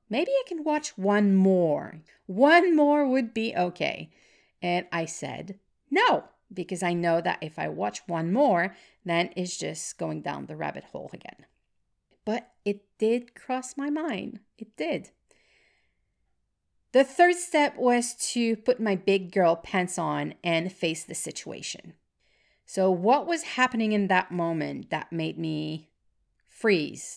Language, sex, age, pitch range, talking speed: English, female, 40-59, 170-230 Hz, 150 wpm